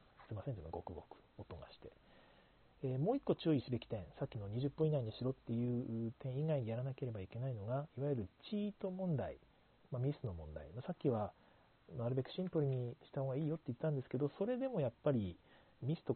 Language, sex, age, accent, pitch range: Japanese, male, 40-59, native, 110-155 Hz